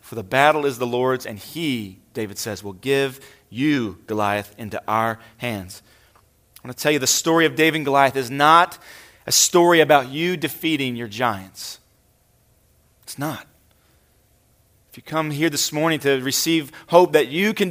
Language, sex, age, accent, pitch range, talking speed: English, male, 30-49, American, 115-160 Hz, 175 wpm